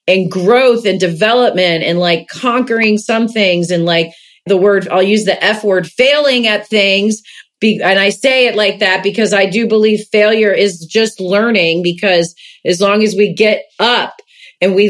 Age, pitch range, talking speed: 30-49, 185-220 Hz, 175 wpm